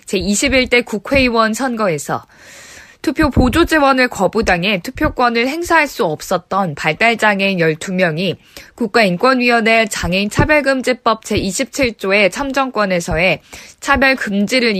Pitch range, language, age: 190-255 Hz, Korean, 20-39